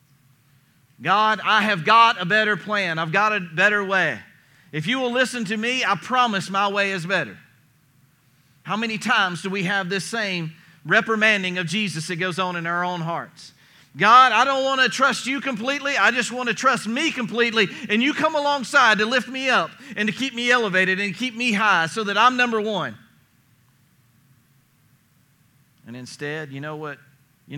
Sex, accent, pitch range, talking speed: male, American, 130-200 Hz, 185 wpm